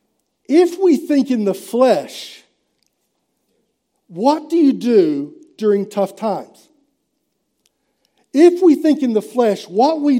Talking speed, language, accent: 125 wpm, English, American